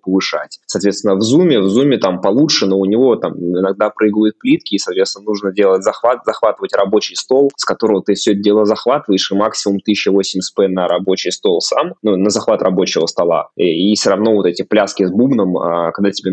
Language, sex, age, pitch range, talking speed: Russian, male, 20-39, 95-120 Hz, 200 wpm